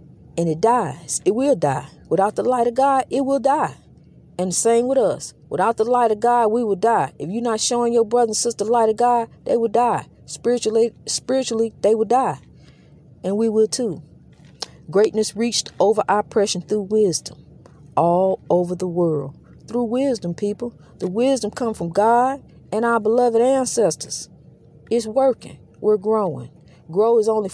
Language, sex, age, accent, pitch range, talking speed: English, female, 40-59, American, 180-230 Hz, 175 wpm